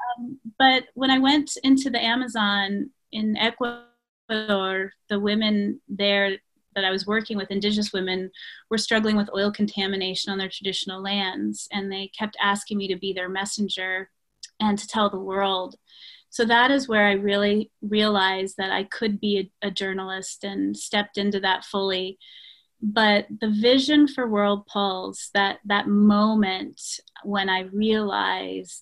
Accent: American